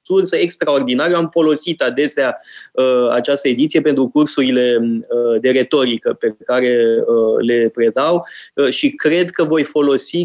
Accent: native